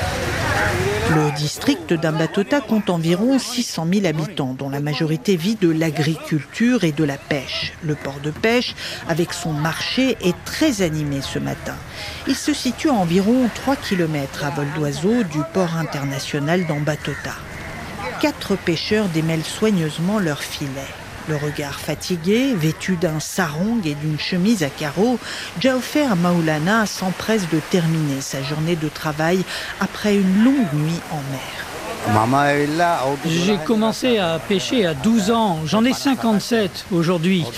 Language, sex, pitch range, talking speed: French, female, 155-220 Hz, 140 wpm